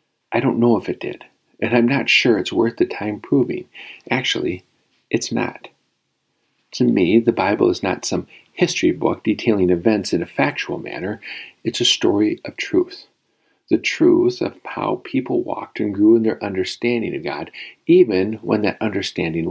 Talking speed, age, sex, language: 170 wpm, 50-69, male, English